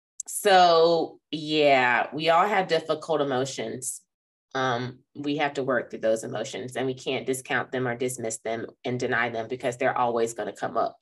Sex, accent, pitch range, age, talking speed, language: female, American, 135-190 Hz, 20-39, 180 wpm, English